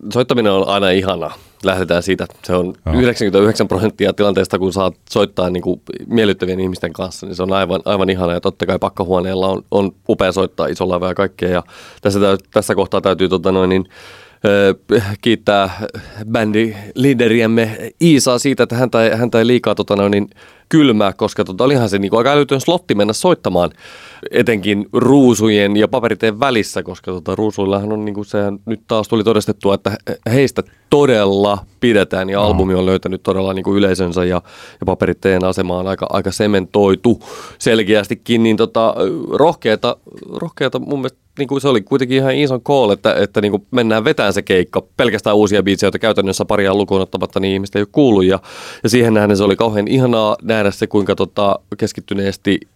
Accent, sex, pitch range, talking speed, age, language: native, male, 95-115 Hz, 165 wpm, 30-49, Finnish